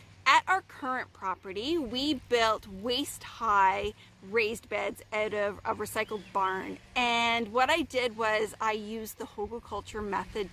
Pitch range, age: 215-280 Hz, 30-49